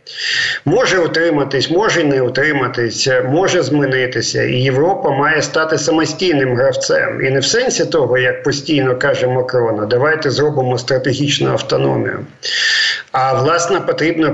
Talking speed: 120 wpm